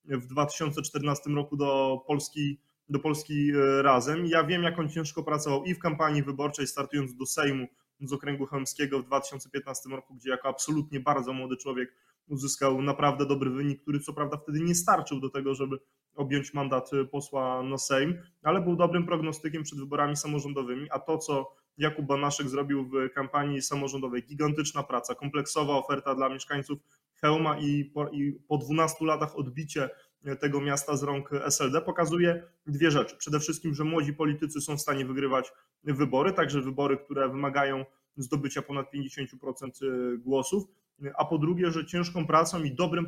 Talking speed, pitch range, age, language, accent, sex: 160 wpm, 135-155 Hz, 20-39, Polish, native, male